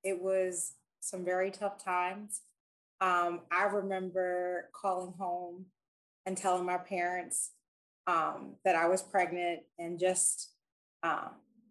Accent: American